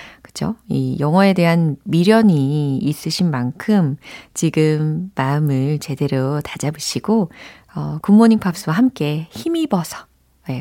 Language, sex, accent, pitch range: Korean, female, native, 145-210 Hz